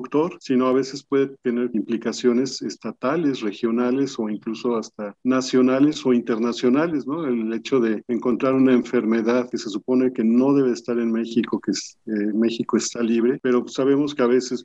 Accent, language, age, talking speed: Mexican, Spanish, 40-59, 165 wpm